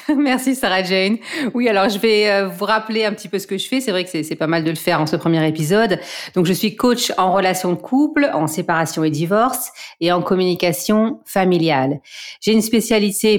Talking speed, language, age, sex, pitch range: 215 wpm, English, 40-59, female, 170-210 Hz